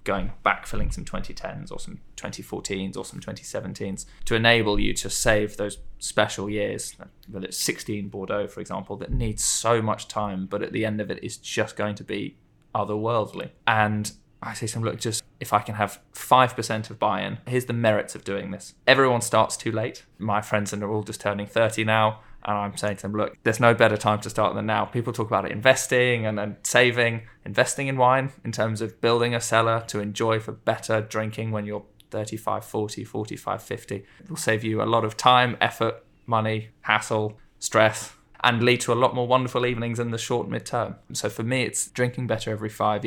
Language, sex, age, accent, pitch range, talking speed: English, male, 20-39, British, 105-115 Hz, 205 wpm